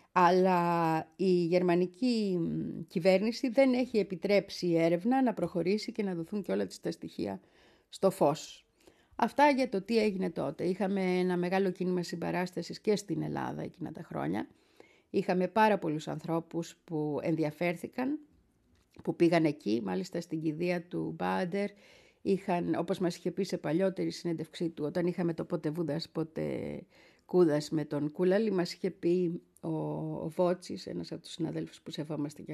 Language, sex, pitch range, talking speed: Greek, female, 165-200 Hz, 150 wpm